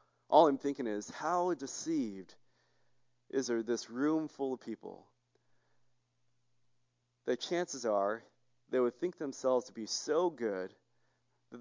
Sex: male